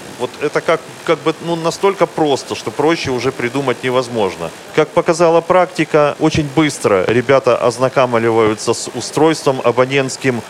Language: Russian